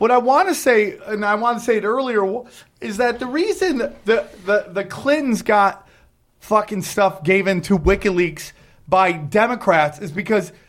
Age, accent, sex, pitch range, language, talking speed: 30-49, American, male, 195-250 Hz, English, 175 wpm